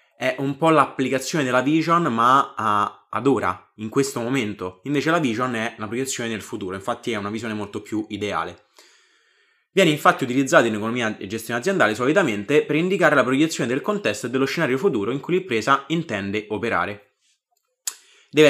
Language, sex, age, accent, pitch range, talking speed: Italian, male, 20-39, native, 110-155 Hz, 170 wpm